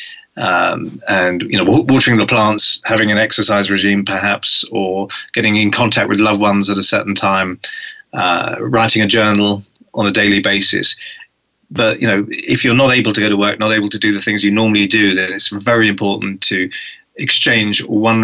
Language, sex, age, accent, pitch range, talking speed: English, male, 30-49, British, 100-115 Hz, 190 wpm